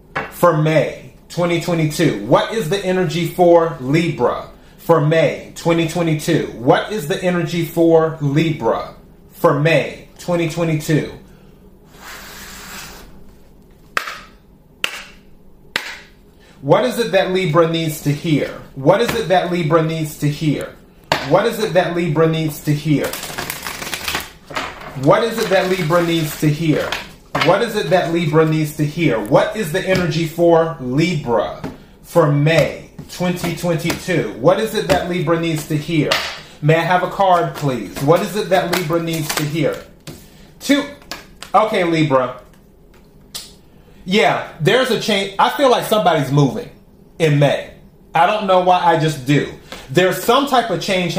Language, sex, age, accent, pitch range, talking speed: English, male, 30-49, American, 160-185 Hz, 140 wpm